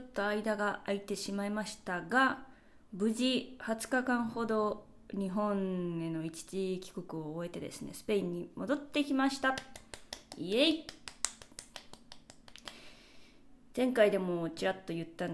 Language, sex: Japanese, female